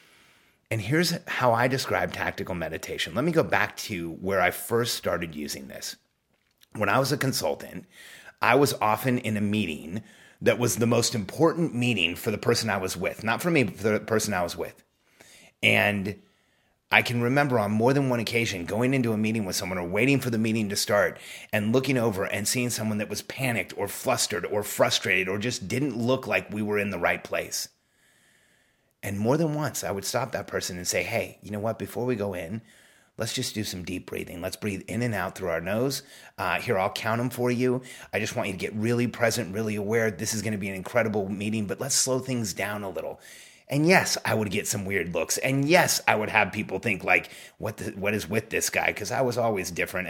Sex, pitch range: male, 100-125 Hz